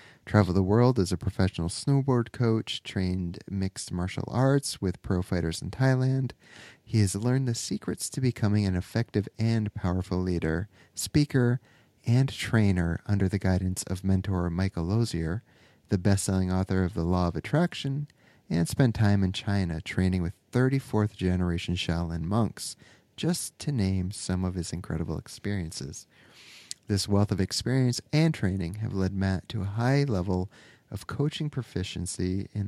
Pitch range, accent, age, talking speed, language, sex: 90-120 Hz, American, 30-49, 150 wpm, English, male